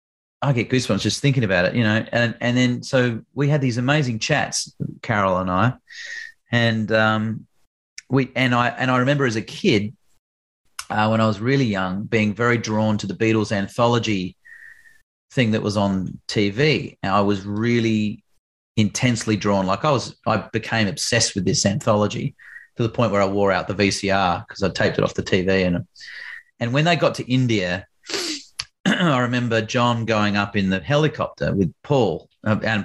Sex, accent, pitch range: male, Australian, 100-120 Hz